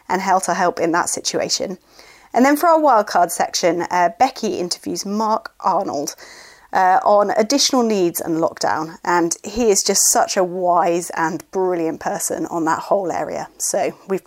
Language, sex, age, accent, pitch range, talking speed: English, female, 30-49, British, 180-250 Hz, 160 wpm